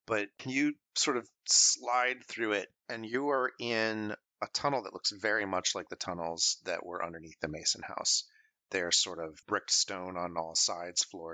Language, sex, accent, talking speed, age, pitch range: English, male, American, 185 wpm, 30-49, 85-100 Hz